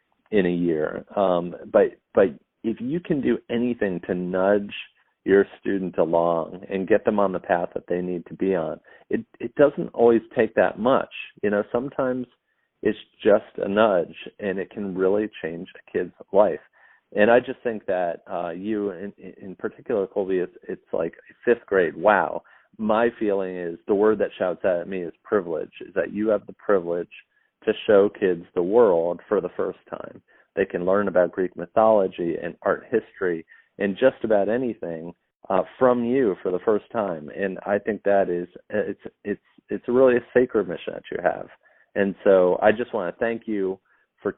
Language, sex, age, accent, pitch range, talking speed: English, male, 40-59, American, 90-110 Hz, 185 wpm